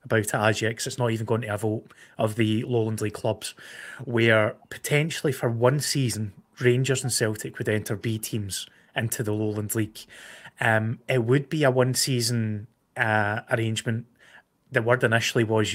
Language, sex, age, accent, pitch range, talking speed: English, male, 20-39, British, 110-130 Hz, 160 wpm